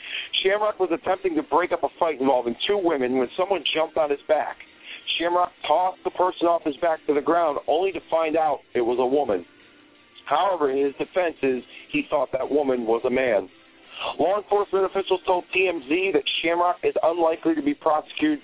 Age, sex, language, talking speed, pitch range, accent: 50-69, male, English, 190 wpm, 140-195 Hz, American